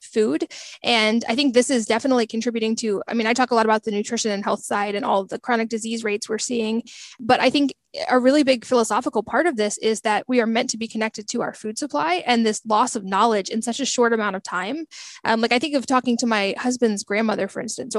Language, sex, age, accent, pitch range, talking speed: English, female, 20-39, American, 220-250 Hz, 250 wpm